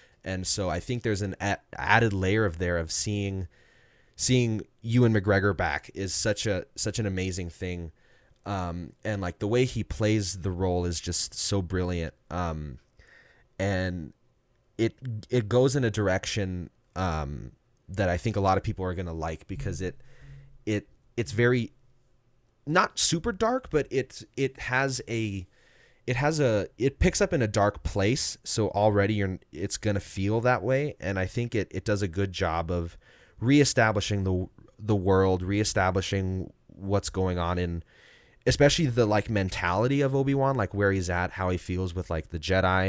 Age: 20-39